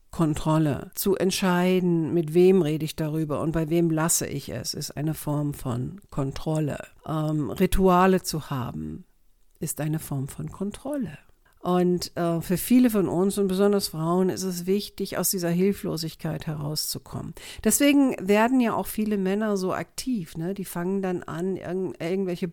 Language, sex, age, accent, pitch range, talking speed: German, female, 50-69, German, 165-200 Hz, 150 wpm